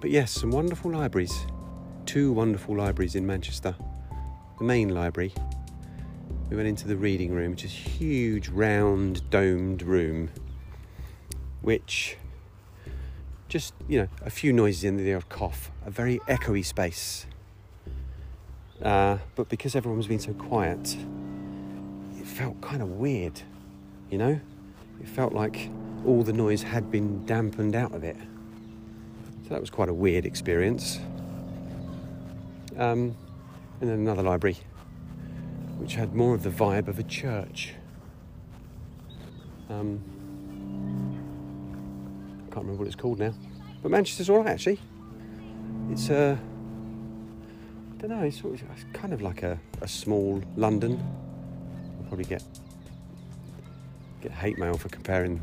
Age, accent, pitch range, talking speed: 40-59, British, 90-110 Hz, 135 wpm